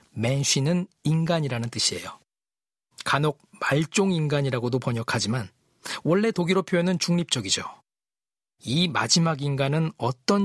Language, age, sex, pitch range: Korean, 40-59, male, 130-175 Hz